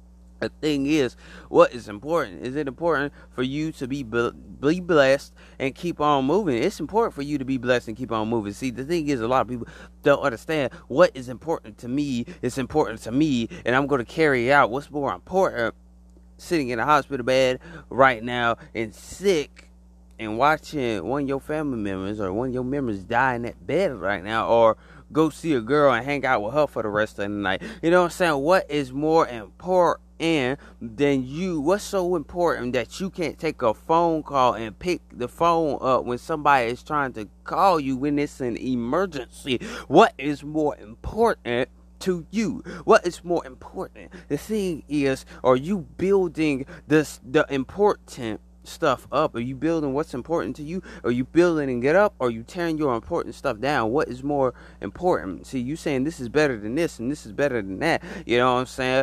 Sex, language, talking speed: male, English, 205 wpm